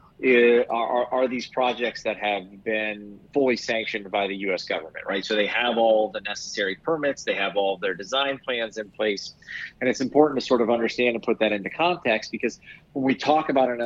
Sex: male